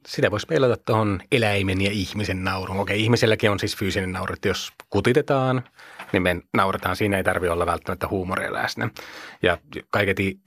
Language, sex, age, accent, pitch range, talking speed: Finnish, male, 30-49, native, 95-105 Hz, 165 wpm